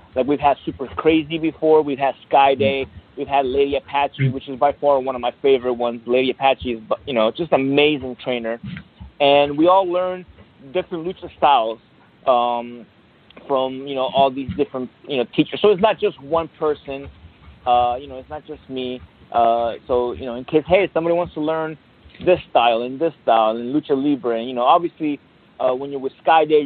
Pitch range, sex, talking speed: 125-150 Hz, male, 205 wpm